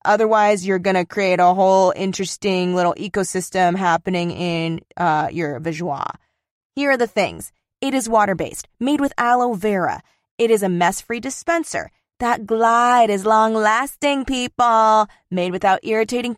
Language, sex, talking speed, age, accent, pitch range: English, female, 145 wpm, 20-39, American, 185-240 Hz